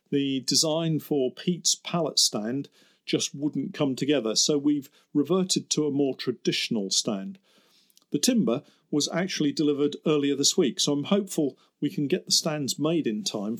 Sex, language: male, English